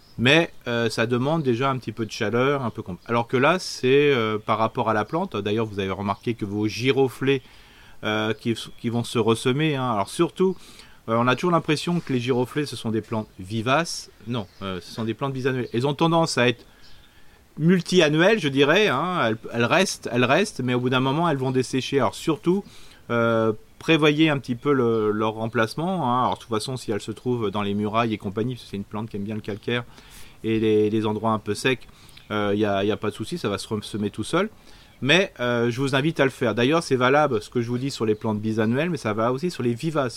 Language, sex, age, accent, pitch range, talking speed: French, male, 30-49, French, 110-140 Hz, 240 wpm